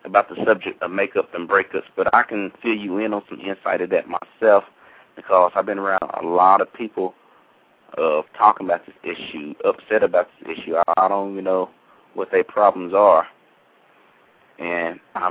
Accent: American